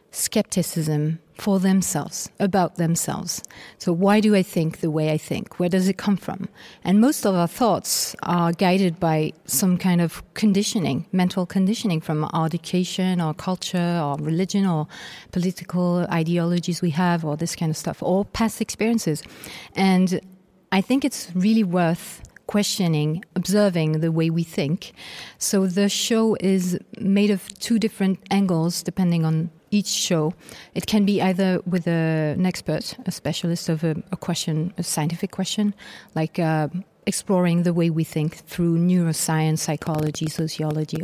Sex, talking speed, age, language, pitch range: female, 155 wpm, 40-59, English, 165-200 Hz